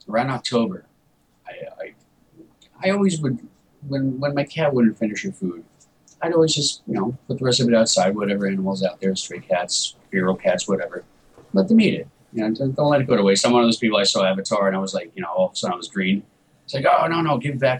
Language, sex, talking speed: English, male, 255 wpm